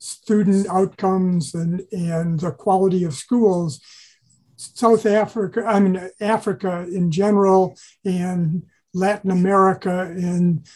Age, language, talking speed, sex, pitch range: 50-69, English, 105 wpm, male, 175-210 Hz